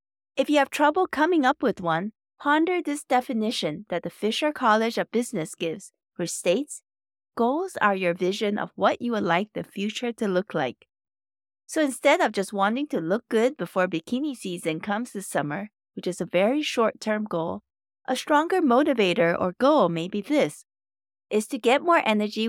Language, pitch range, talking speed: English, 180-255 Hz, 180 wpm